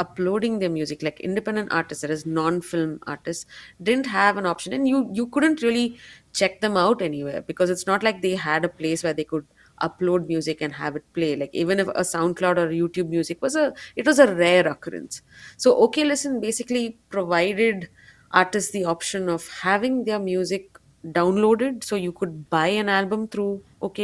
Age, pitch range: 30-49, 170-220 Hz